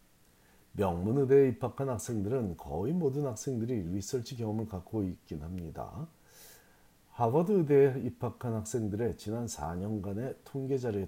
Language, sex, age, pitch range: Korean, male, 50-69, 100-135 Hz